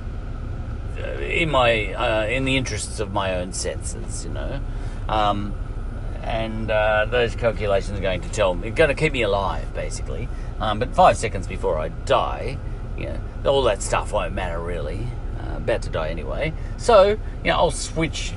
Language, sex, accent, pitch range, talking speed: English, male, Australian, 95-115 Hz, 180 wpm